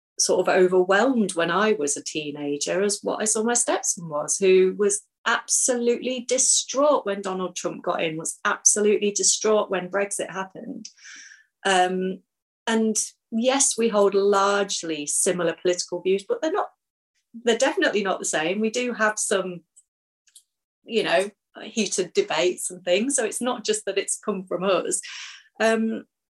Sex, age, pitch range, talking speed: female, 30-49, 185-235 Hz, 155 wpm